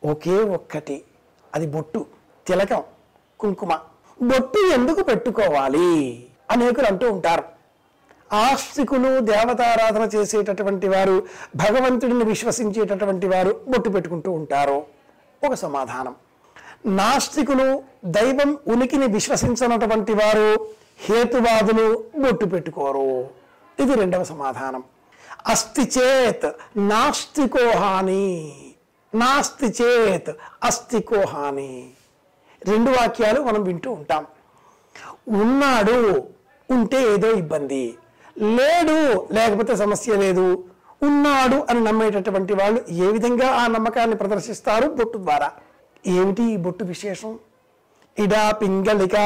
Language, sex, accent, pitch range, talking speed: Telugu, male, native, 195-260 Hz, 85 wpm